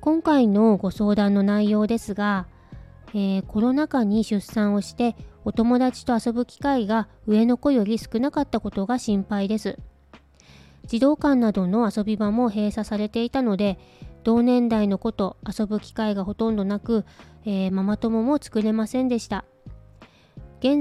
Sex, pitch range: female, 200-240 Hz